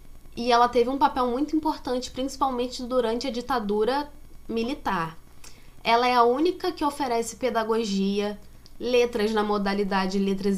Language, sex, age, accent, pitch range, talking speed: Portuguese, female, 10-29, Brazilian, 200-245 Hz, 130 wpm